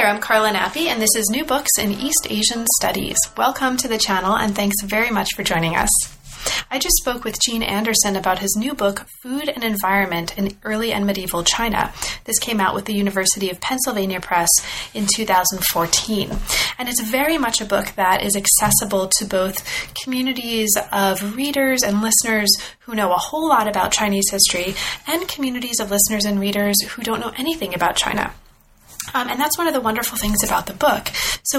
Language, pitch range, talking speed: English, 200-240 Hz, 190 wpm